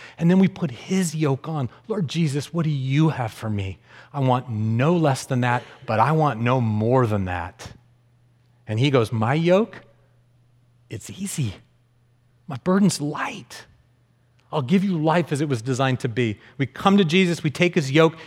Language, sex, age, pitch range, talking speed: English, male, 40-59, 115-140 Hz, 185 wpm